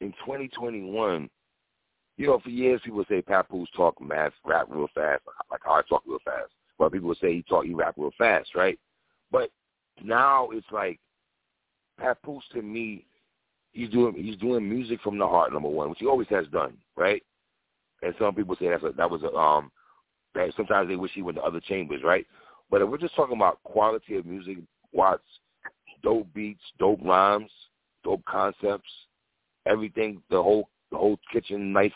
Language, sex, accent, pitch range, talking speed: English, male, American, 100-120 Hz, 185 wpm